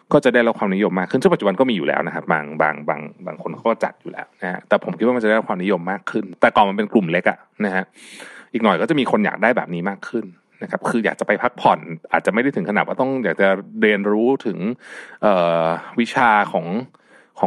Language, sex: Thai, male